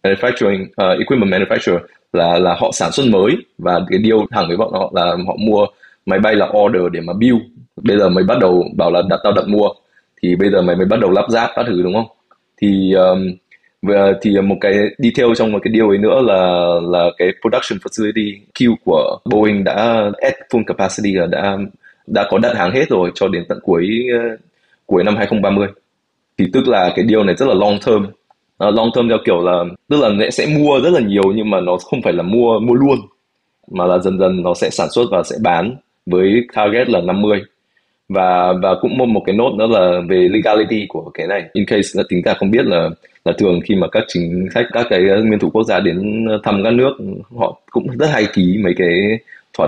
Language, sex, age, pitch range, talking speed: Vietnamese, male, 20-39, 90-110 Hz, 225 wpm